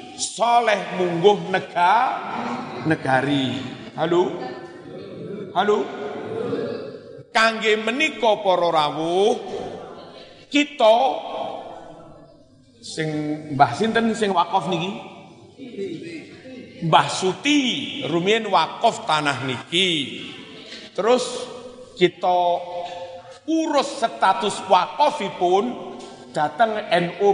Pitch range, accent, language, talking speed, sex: 175-250 Hz, native, Indonesian, 65 wpm, male